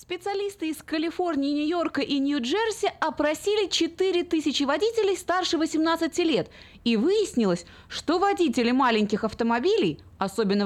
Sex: female